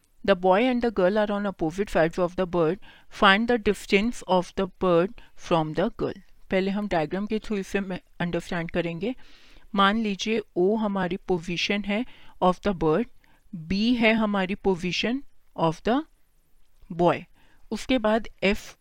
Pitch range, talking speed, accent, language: 185-220 Hz, 155 wpm, native, Hindi